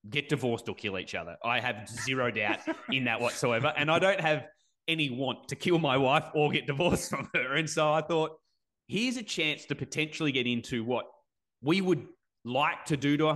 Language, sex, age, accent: English, male, 30-49, Australian